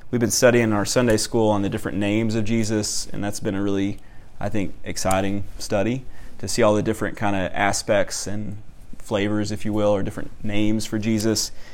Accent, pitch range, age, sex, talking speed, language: American, 105-120 Hz, 30-49, male, 205 wpm, English